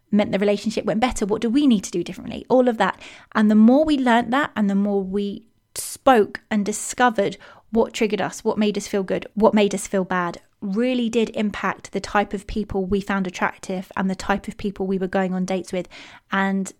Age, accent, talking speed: 20-39, British, 225 wpm